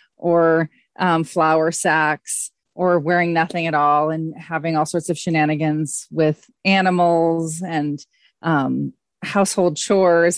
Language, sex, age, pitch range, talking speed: English, female, 30-49, 160-195 Hz, 120 wpm